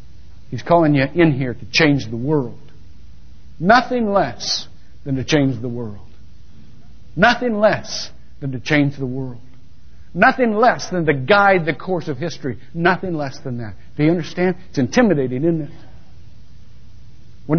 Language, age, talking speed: English, 60-79, 150 wpm